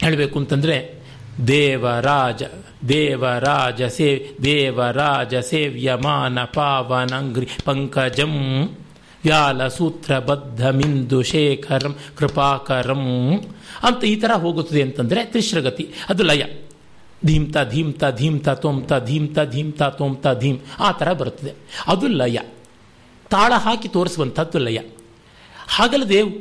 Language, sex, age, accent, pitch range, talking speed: Kannada, male, 50-69, native, 135-185 Hz, 100 wpm